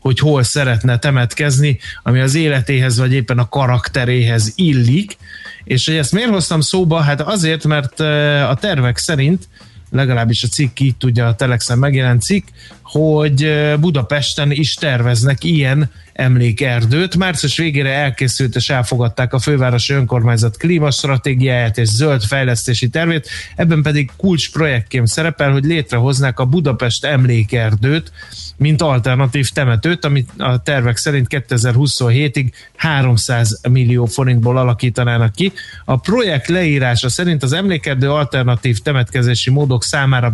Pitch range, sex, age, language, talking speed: 120-150 Hz, male, 30-49, Hungarian, 125 wpm